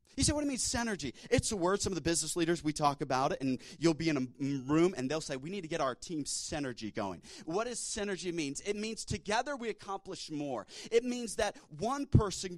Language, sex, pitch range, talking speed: English, male, 150-200 Hz, 250 wpm